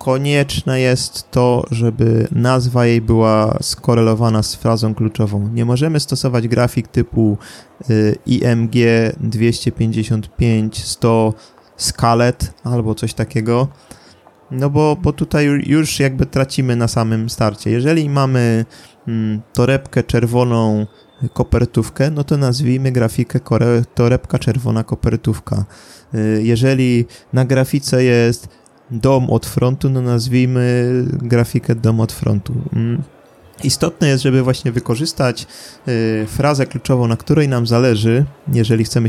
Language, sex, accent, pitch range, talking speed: Polish, male, native, 115-135 Hz, 105 wpm